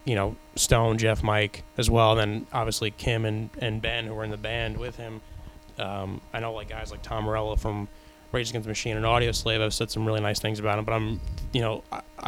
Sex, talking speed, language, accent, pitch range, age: male, 245 wpm, English, American, 105-115 Hz, 20-39